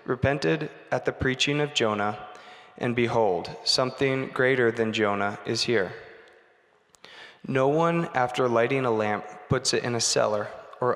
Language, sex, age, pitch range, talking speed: English, male, 20-39, 115-130 Hz, 140 wpm